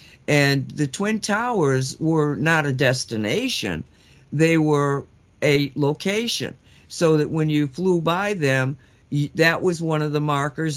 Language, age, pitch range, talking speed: English, 60-79, 135-170 Hz, 140 wpm